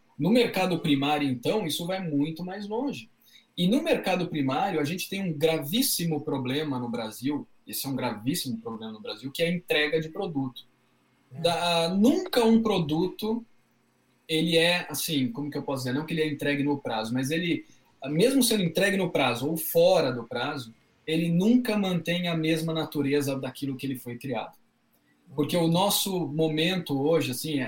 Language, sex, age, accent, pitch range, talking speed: Portuguese, male, 20-39, Brazilian, 130-185 Hz, 175 wpm